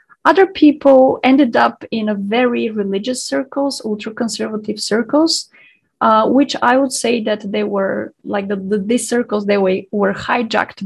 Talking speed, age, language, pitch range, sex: 150 wpm, 30-49, Czech, 200-250 Hz, female